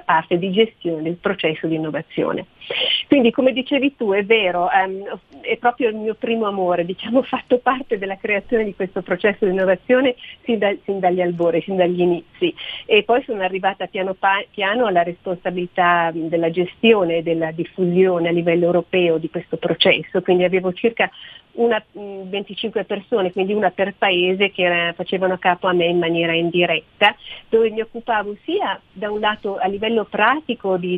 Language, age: Italian, 40-59